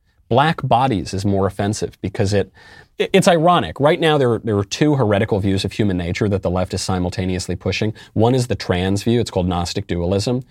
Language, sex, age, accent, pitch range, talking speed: English, male, 30-49, American, 95-130 Hz, 205 wpm